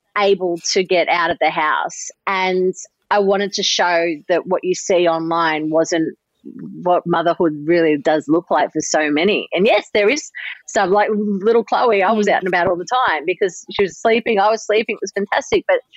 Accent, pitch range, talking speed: Australian, 170-215 Hz, 205 wpm